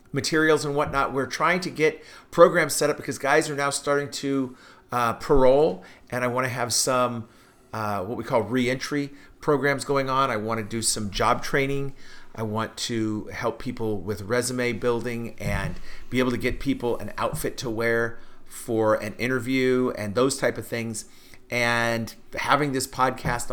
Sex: male